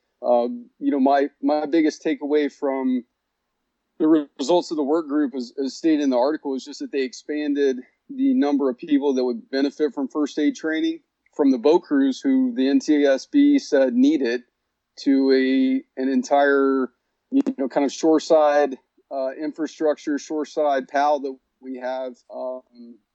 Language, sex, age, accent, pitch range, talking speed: English, male, 40-59, American, 130-155 Hz, 160 wpm